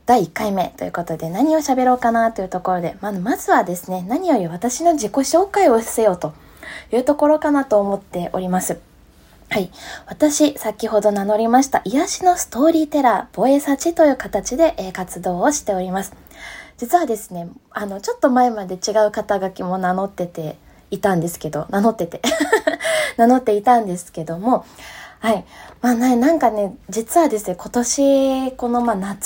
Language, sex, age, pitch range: Japanese, female, 20-39, 200-295 Hz